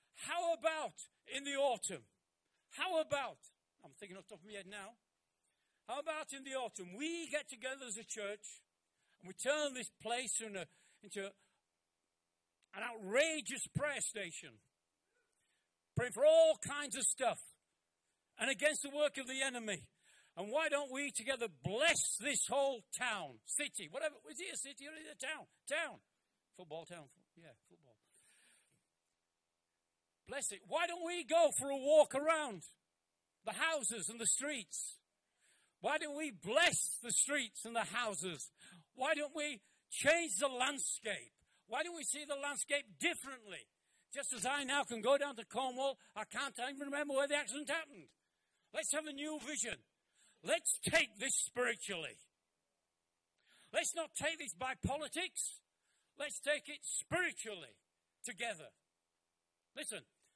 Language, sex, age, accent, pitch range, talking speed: English, male, 60-79, British, 200-295 Hz, 150 wpm